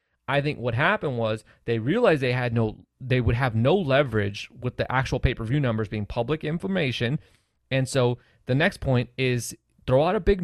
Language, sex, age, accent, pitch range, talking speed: English, male, 30-49, American, 115-155 Hz, 190 wpm